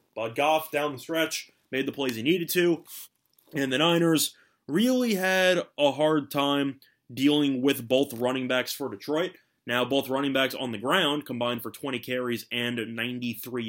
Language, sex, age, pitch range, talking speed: English, male, 20-39, 125-150 Hz, 170 wpm